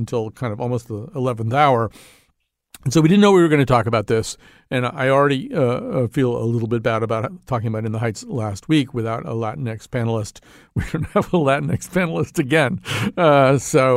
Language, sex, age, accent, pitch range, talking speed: English, male, 50-69, American, 120-155 Hz, 210 wpm